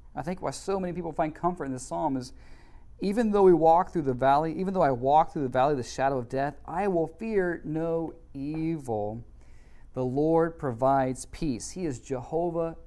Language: English